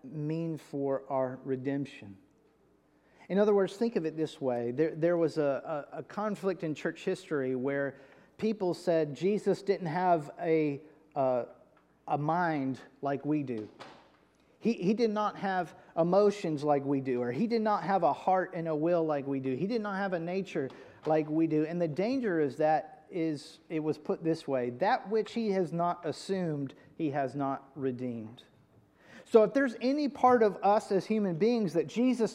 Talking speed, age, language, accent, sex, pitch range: 185 wpm, 40-59, English, American, male, 155-215 Hz